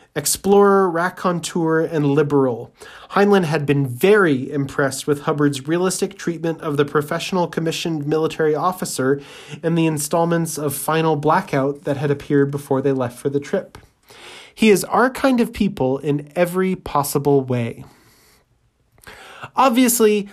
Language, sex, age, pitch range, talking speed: English, male, 20-39, 135-170 Hz, 135 wpm